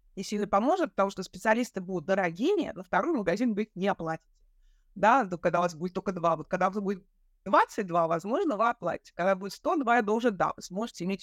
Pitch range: 185-230 Hz